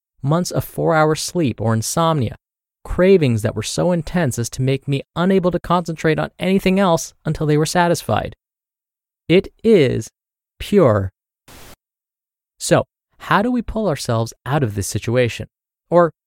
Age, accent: 20-39, American